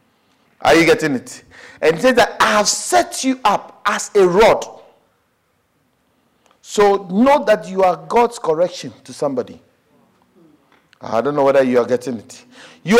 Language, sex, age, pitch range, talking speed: English, male, 50-69, 170-255 Hz, 155 wpm